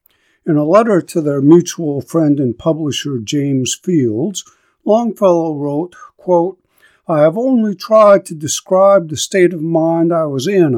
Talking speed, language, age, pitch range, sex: 150 wpm, English, 60-79, 130-180 Hz, male